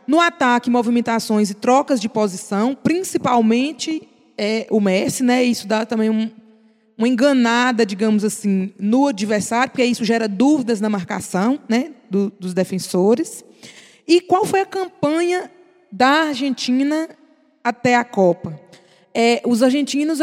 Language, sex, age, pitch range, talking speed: Portuguese, female, 20-39, 215-280 Hz, 135 wpm